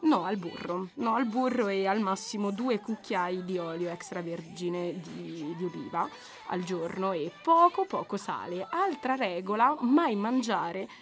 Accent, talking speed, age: native, 145 wpm, 20-39